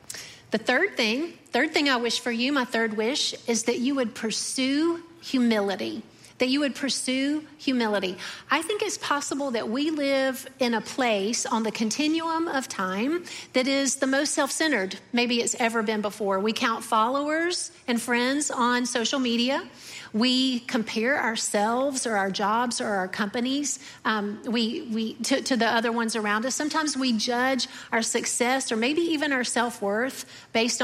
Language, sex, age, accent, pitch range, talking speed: English, female, 40-59, American, 220-275 Hz, 165 wpm